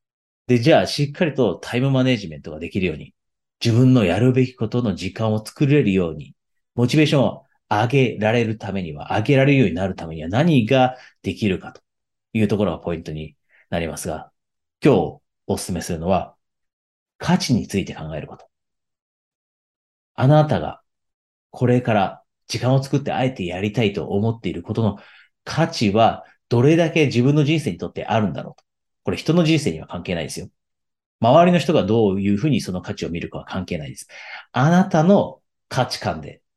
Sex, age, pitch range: male, 40-59, 100-135 Hz